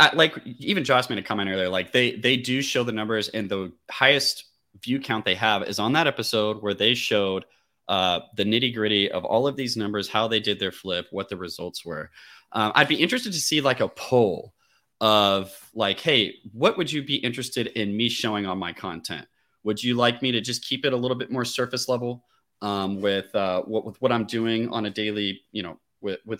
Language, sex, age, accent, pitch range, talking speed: English, male, 30-49, American, 100-125 Hz, 220 wpm